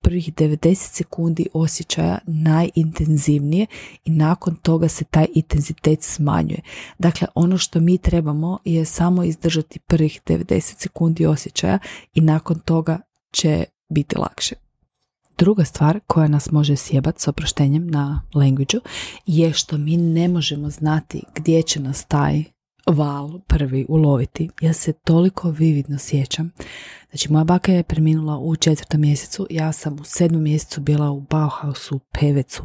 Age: 30-49